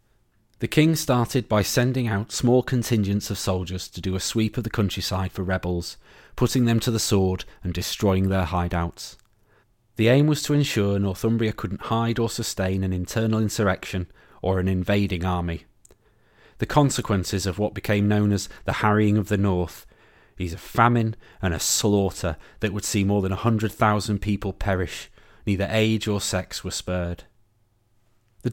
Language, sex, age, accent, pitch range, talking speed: English, male, 30-49, British, 95-115 Hz, 165 wpm